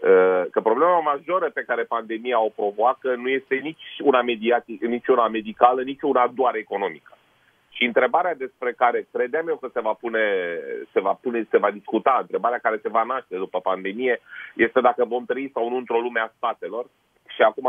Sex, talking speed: male, 185 wpm